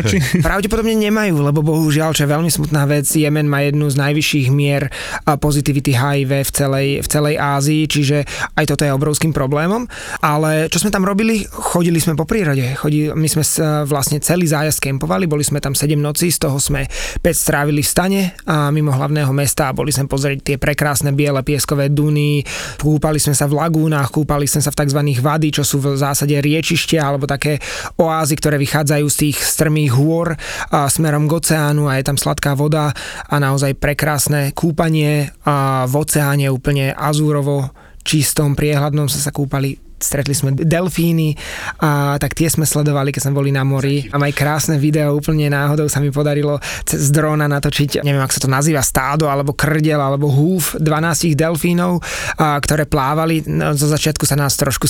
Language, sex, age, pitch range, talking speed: Slovak, male, 20-39, 140-155 Hz, 180 wpm